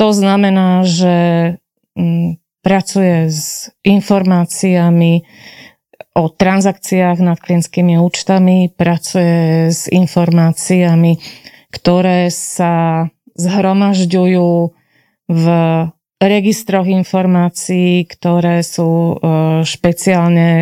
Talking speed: 65 wpm